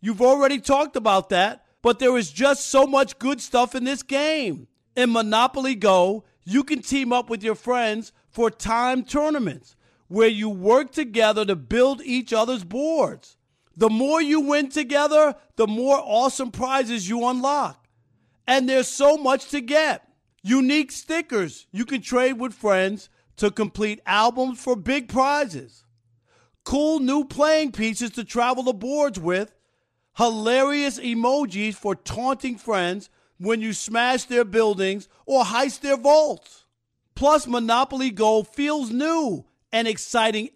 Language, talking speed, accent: English, 145 wpm, American